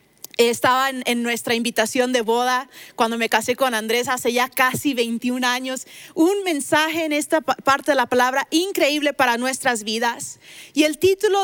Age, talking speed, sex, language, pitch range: 30-49, 170 wpm, female, Spanish, 250-310 Hz